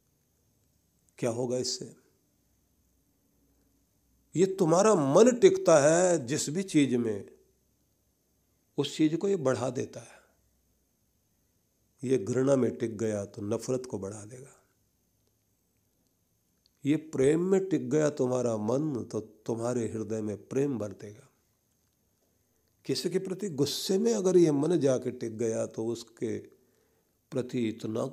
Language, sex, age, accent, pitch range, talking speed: Hindi, male, 50-69, native, 115-155 Hz, 120 wpm